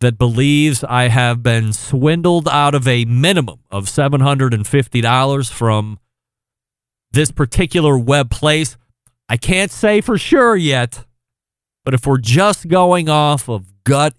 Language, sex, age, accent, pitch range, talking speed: English, male, 40-59, American, 125-155 Hz, 130 wpm